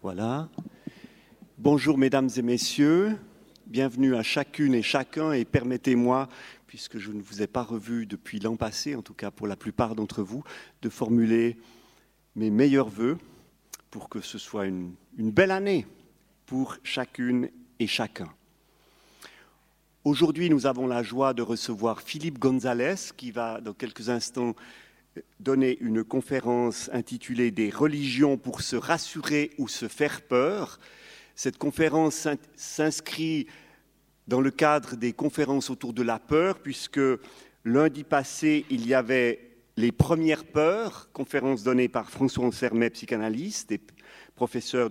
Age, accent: 40-59, French